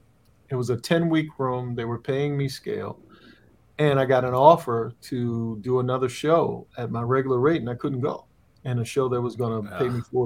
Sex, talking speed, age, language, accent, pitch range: male, 220 wpm, 50-69, English, American, 115-140 Hz